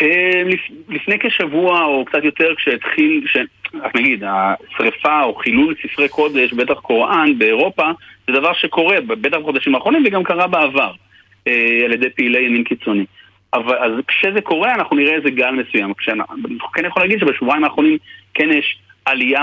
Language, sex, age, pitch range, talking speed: Hebrew, male, 40-59, 115-155 Hz, 155 wpm